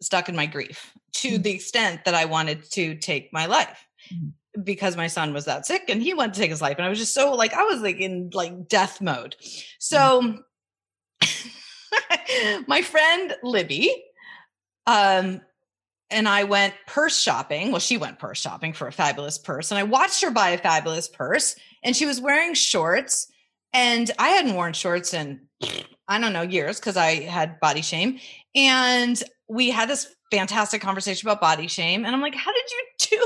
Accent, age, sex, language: American, 30-49, female, English